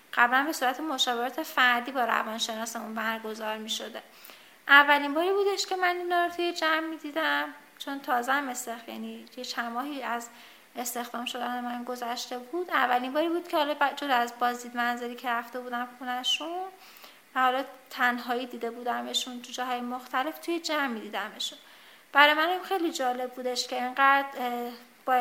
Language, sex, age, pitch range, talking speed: Persian, female, 30-49, 245-300 Hz, 155 wpm